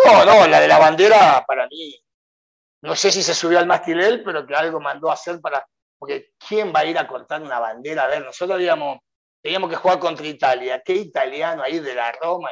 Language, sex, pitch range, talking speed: Spanish, male, 155-220 Hz, 220 wpm